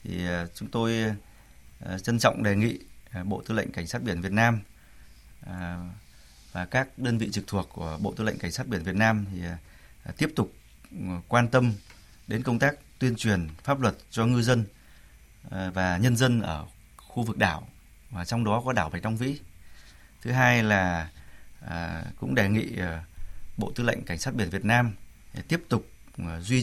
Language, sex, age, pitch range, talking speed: Vietnamese, male, 20-39, 90-120 Hz, 170 wpm